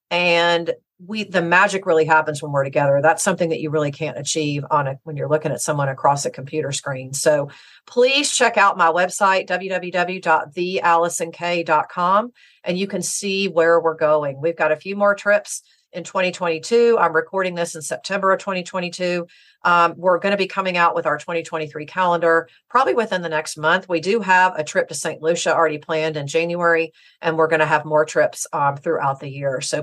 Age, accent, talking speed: 40-59, American, 195 wpm